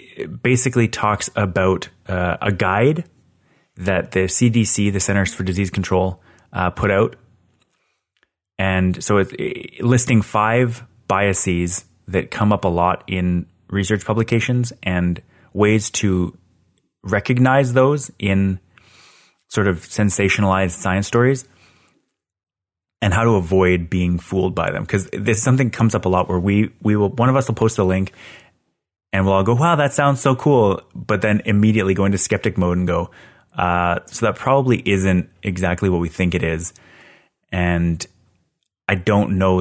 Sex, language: male, English